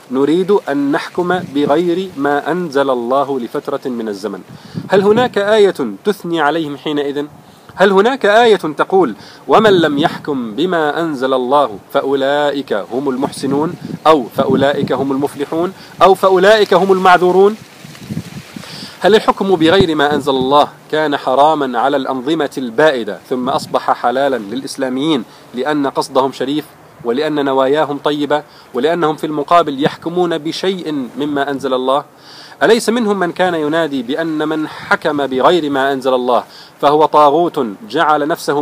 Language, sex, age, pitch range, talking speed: Arabic, male, 40-59, 140-180 Hz, 125 wpm